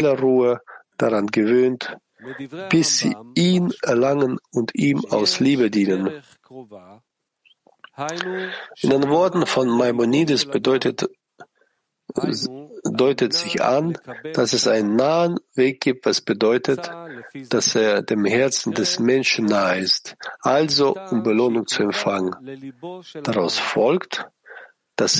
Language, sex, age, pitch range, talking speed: German, male, 50-69, 115-155 Hz, 105 wpm